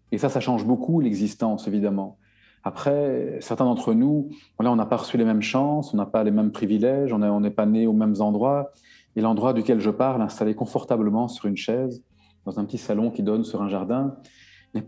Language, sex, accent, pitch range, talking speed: French, male, French, 105-150 Hz, 210 wpm